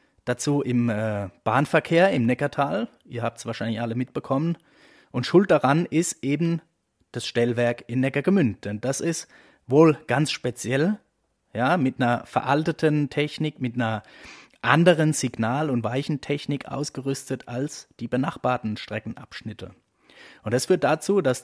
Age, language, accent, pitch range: 30-49, German, German, 115-150 Hz